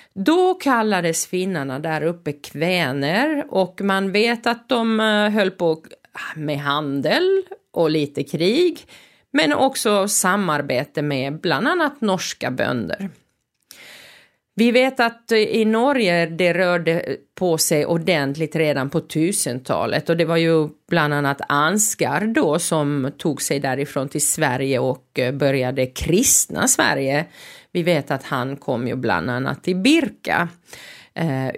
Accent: native